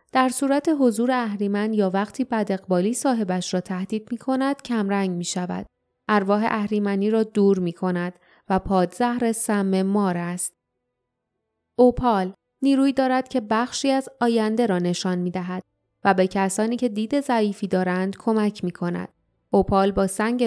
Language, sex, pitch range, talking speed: Persian, female, 190-250 Hz, 145 wpm